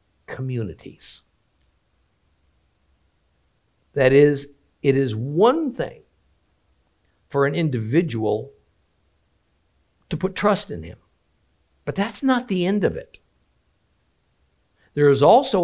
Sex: male